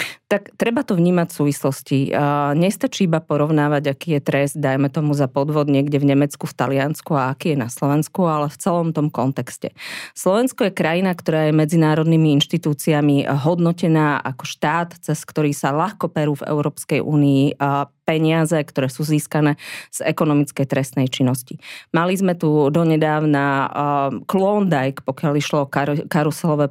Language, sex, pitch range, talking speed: Slovak, female, 140-165 Hz, 150 wpm